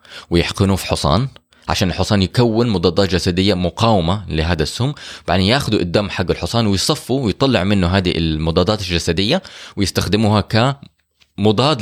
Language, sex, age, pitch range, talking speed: Arabic, male, 20-39, 90-125 Hz, 130 wpm